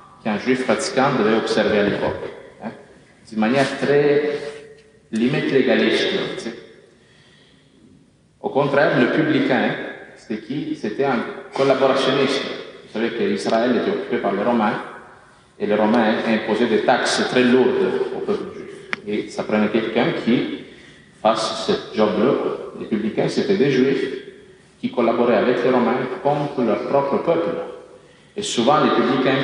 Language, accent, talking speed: French, Italian, 135 wpm